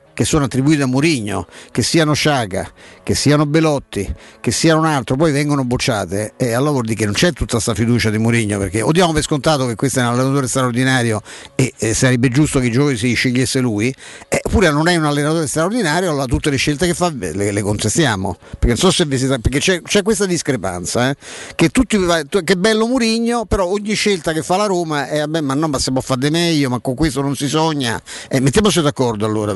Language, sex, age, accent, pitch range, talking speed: Italian, male, 50-69, native, 120-160 Hz, 225 wpm